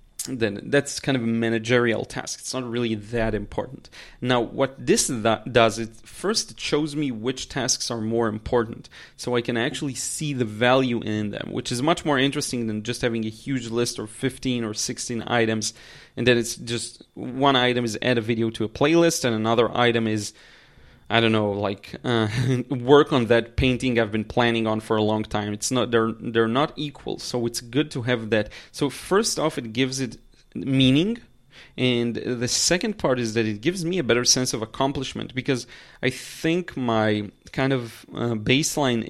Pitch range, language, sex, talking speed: 115-135 Hz, English, male, 195 wpm